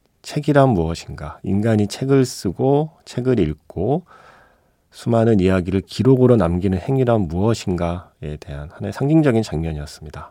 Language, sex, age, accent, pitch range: Korean, male, 40-59, native, 90-130 Hz